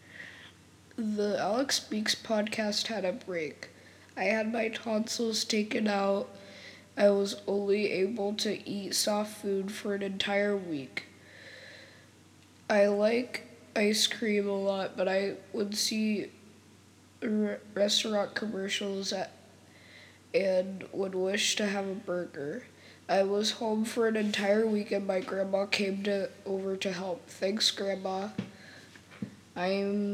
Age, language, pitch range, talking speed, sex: 10-29, English, 185-210 Hz, 125 wpm, female